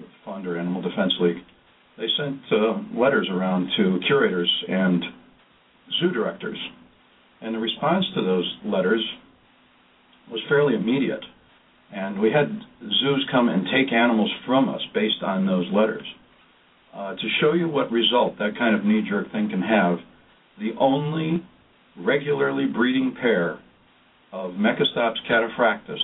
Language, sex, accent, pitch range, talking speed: English, male, American, 95-140 Hz, 135 wpm